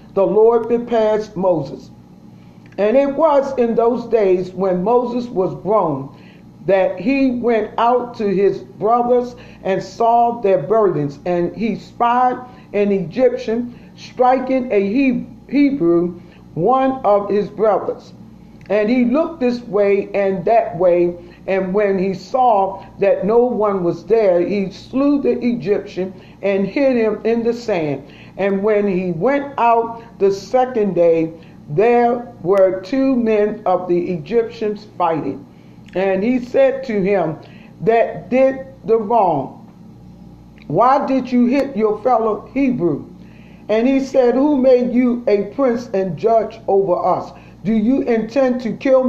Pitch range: 190-245 Hz